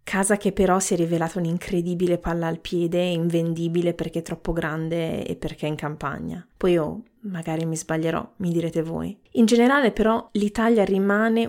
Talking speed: 180 wpm